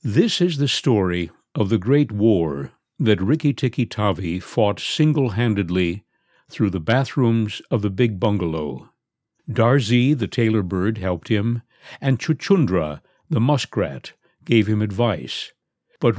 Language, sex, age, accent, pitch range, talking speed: English, male, 60-79, American, 105-145 Hz, 120 wpm